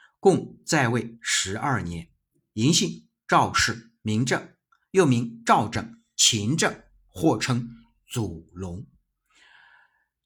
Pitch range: 105-135 Hz